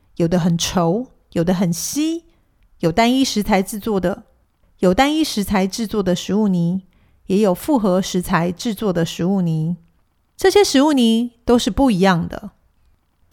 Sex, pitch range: female, 175-240 Hz